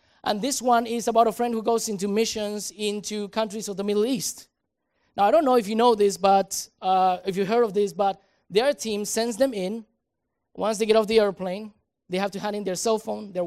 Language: English